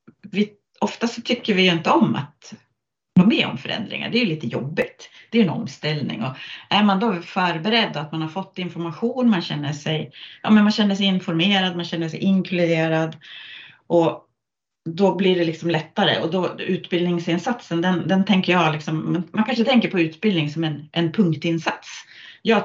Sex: female